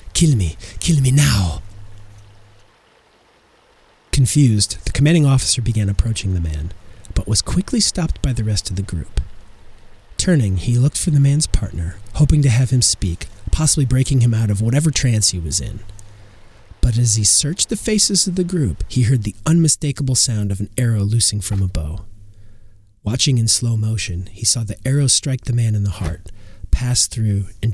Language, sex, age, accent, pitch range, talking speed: English, male, 40-59, American, 95-120 Hz, 180 wpm